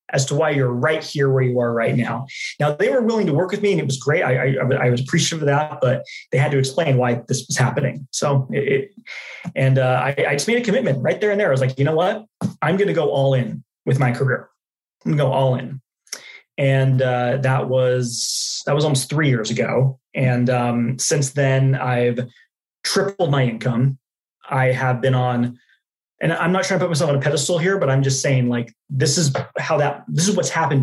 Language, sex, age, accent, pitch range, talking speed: English, male, 20-39, American, 125-150 Hz, 230 wpm